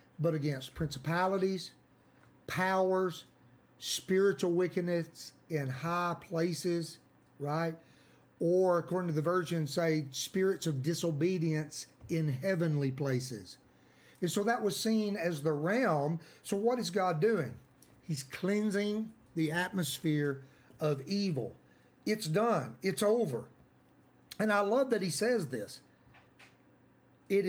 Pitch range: 140-180 Hz